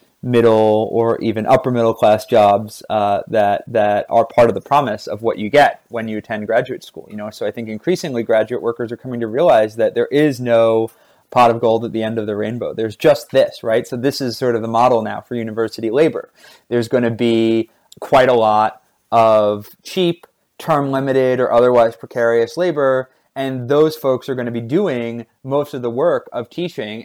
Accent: American